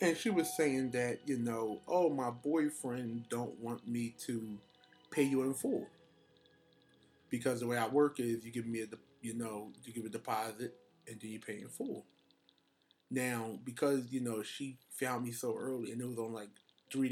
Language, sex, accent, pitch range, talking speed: English, male, American, 110-130 Hz, 195 wpm